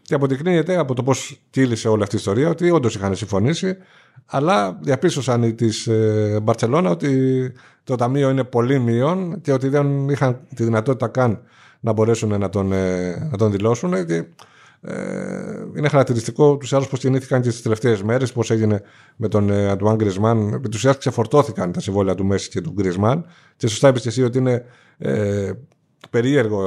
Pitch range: 105-135 Hz